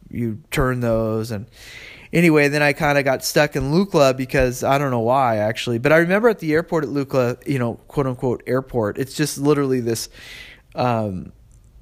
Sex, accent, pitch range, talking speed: male, American, 115-135 Hz, 190 wpm